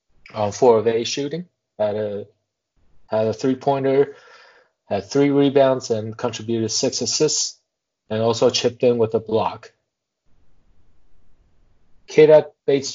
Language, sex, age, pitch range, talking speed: English, male, 30-49, 100-125 Hz, 120 wpm